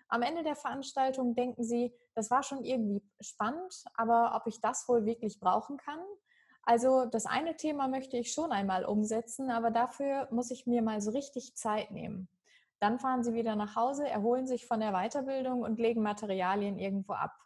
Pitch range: 215-260 Hz